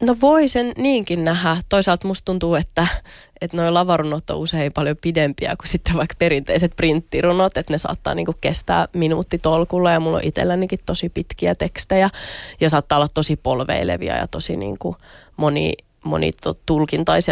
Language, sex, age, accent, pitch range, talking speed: Finnish, female, 20-39, native, 140-170 Hz, 150 wpm